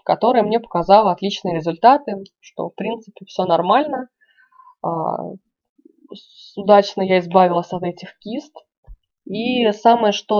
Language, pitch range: Russian, 175-210 Hz